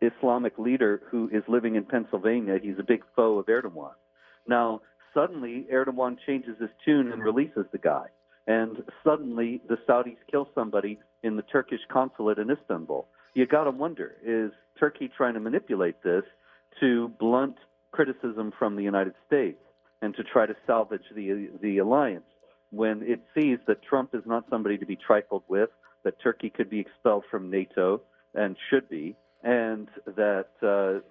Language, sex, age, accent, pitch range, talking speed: English, male, 50-69, American, 95-120 Hz, 165 wpm